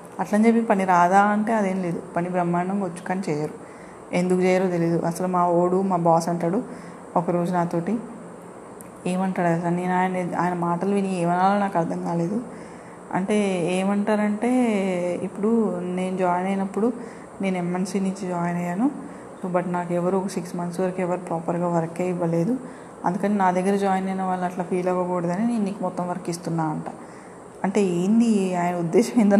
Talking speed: 150 wpm